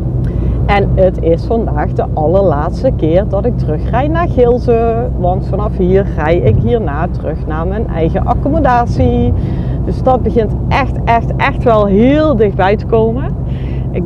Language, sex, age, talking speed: Dutch, female, 40-59, 150 wpm